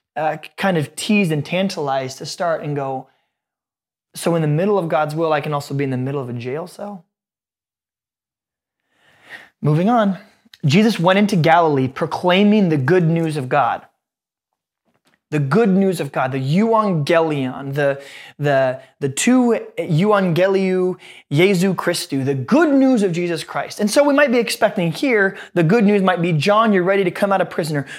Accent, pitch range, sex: American, 150-195 Hz, male